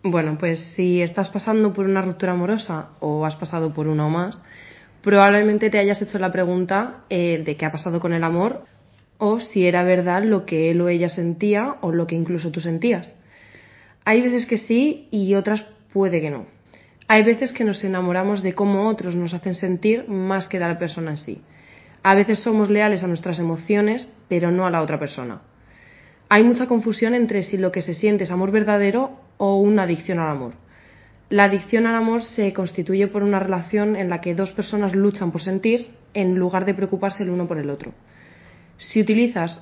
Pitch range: 170-205 Hz